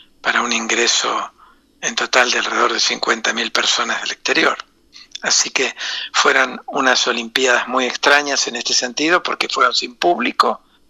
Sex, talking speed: male, 145 wpm